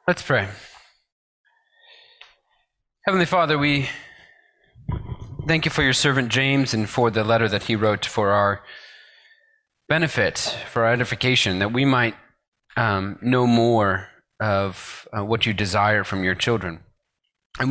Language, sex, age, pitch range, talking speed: English, male, 30-49, 100-130 Hz, 130 wpm